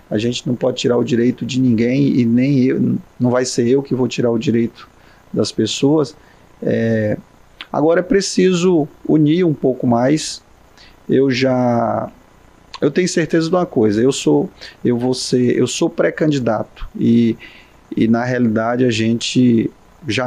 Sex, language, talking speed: male, Portuguese, 155 wpm